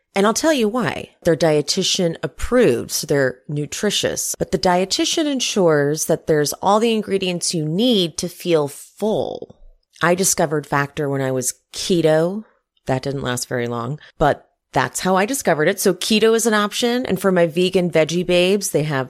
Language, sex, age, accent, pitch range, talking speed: English, female, 30-49, American, 155-215 Hz, 175 wpm